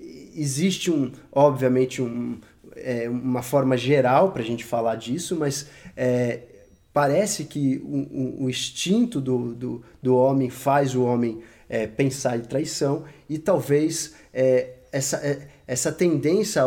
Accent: Brazilian